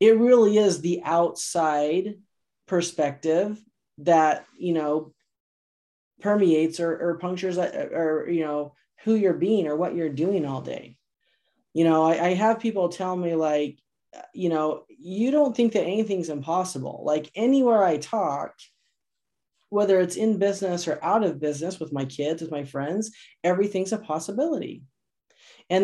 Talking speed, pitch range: 150 wpm, 155-195 Hz